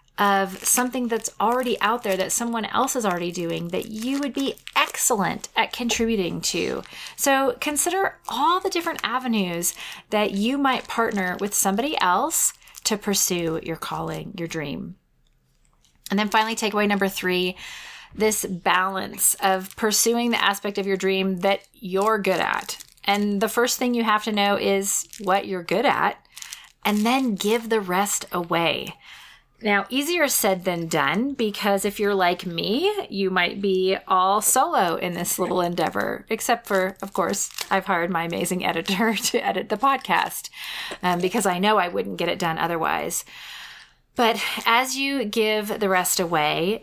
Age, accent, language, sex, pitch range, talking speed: 30-49, American, English, female, 190-230 Hz, 160 wpm